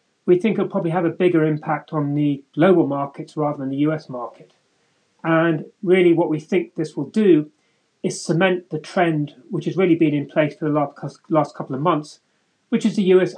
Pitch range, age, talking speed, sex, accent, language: 150-180 Hz, 30-49, 200 wpm, male, British, English